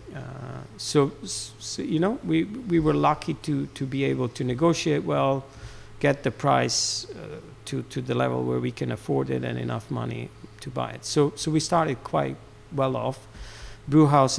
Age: 50-69